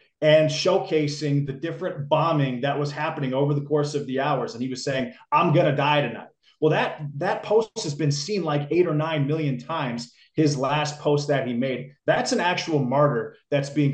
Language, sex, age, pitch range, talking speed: English, male, 30-49, 140-155 Hz, 205 wpm